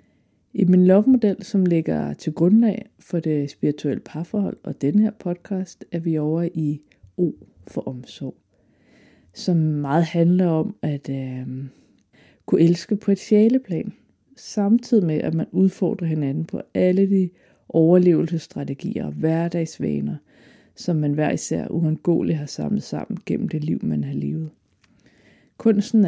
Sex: female